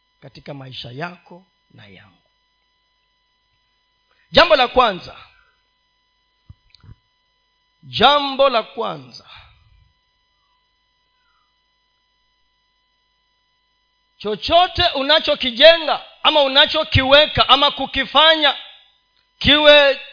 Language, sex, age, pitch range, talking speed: Swahili, male, 40-59, 260-360 Hz, 55 wpm